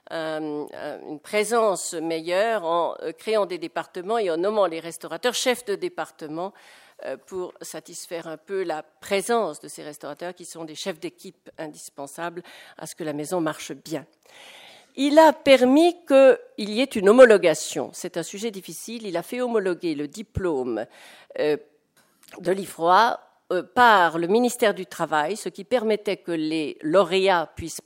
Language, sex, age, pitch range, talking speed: French, female, 50-69, 160-215 Hz, 150 wpm